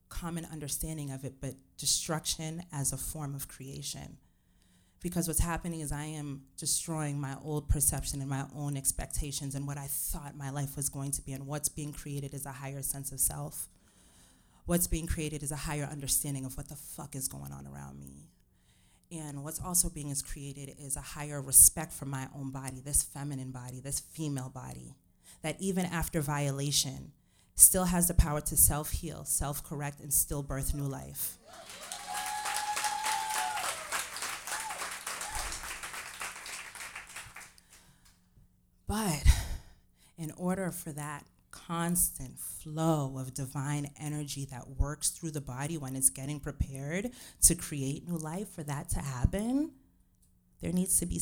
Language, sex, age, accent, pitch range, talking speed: English, female, 30-49, American, 135-155 Hz, 150 wpm